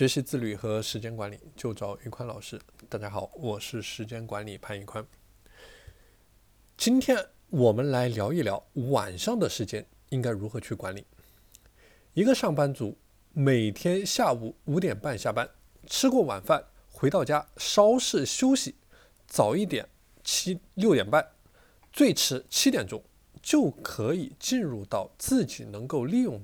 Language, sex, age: Chinese, male, 20-39